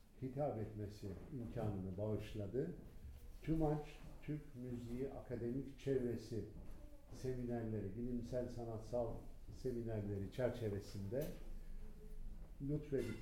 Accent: native